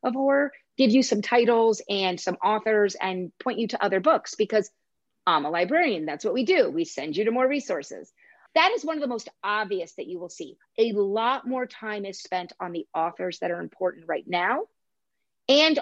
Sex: female